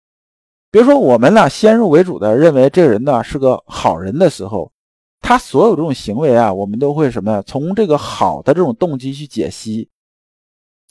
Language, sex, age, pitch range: Chinese, male, 50-69, 110-155 Hz